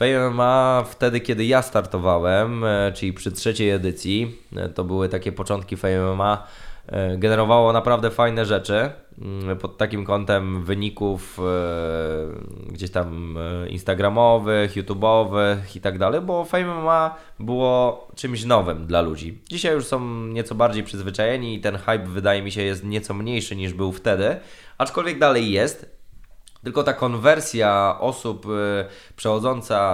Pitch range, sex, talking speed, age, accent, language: 100-125 Hz, male, 125 wpm, 20-39, native, Polish